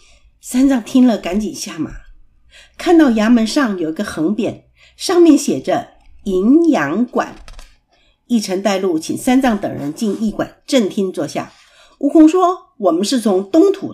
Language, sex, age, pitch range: Chinese, female, 50-69, 210-310 Hz